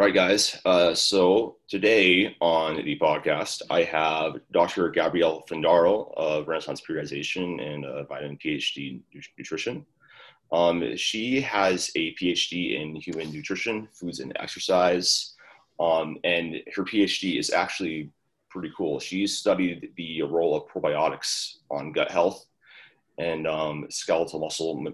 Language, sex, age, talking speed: English, male, 30-49, 130 wpm